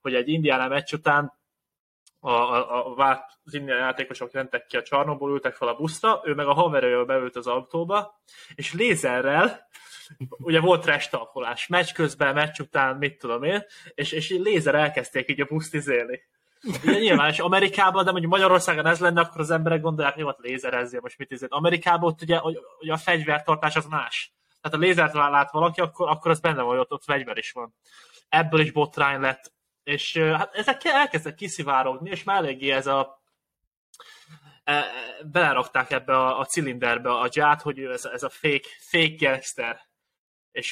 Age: 20-39